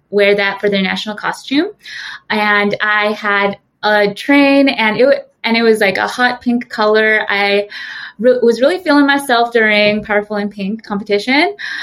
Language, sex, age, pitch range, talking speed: English, female, 20-39, 205-245 Hz, 155 wpm